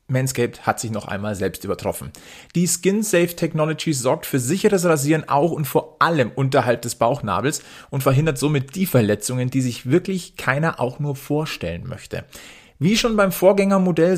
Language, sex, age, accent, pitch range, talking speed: German, male, 40-59, German, 120-170 Hz, 155 wpm